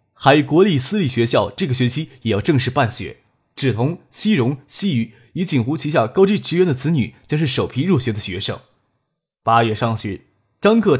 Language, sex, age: Chinese, male, 20-39